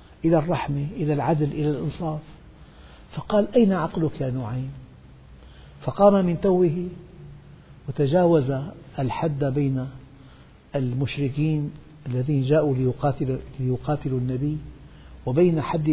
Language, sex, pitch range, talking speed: Arabic, male, 125-165 Hz, 90 wpm